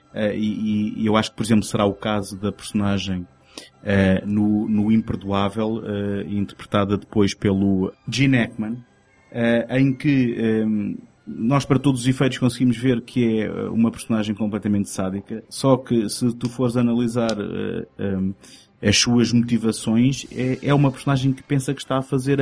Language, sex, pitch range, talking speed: Portuguese, male, 110-135 Hz, 145 wpm